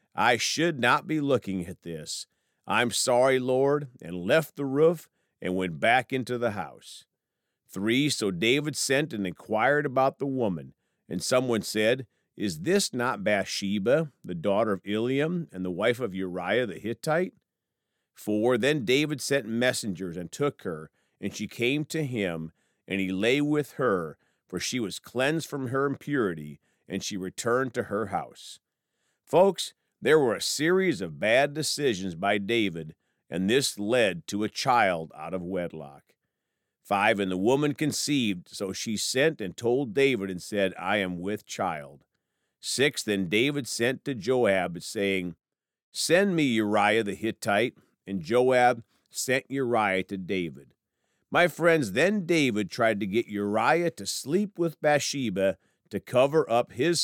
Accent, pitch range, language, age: American, 95-145 Hz, English, 50-69